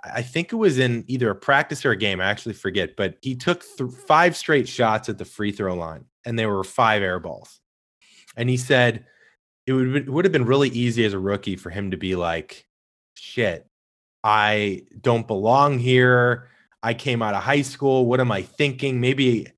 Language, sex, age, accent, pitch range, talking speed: English, male, 20-39, American, 105-140 Hz, 205 wpm